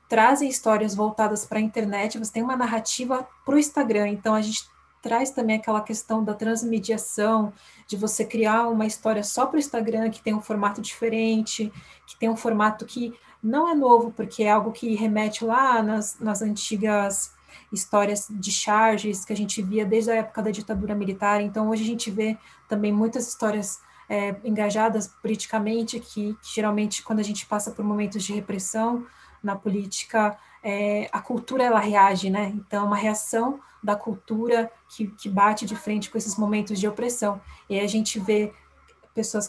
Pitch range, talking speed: 205-225 Hz, 180 wpm